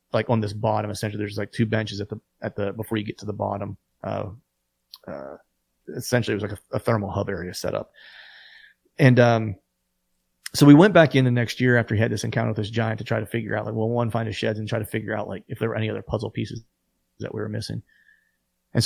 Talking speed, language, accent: 250 wpm, English, American